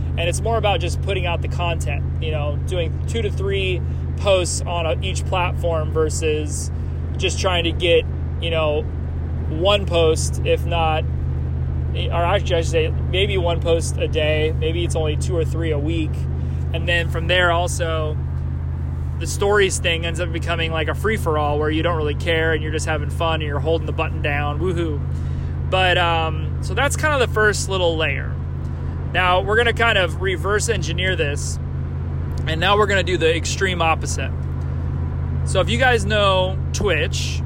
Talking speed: 180 wpm